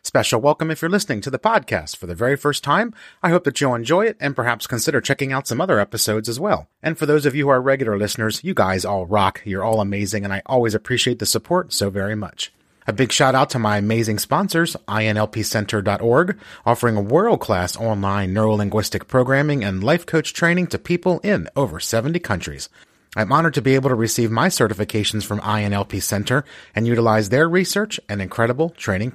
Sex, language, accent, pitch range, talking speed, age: male, English, American, 105-145 Hz, 200 wpm, 30-49